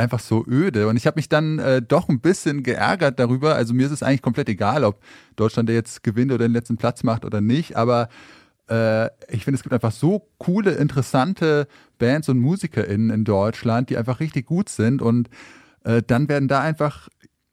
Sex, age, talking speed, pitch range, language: male, 20-39, 200 wpm, 115-140 Hz, German